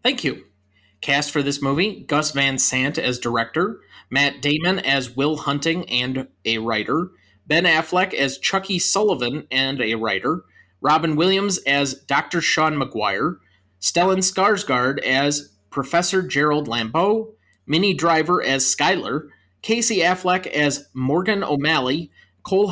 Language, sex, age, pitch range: English, male, 30-49, 130-175 Hz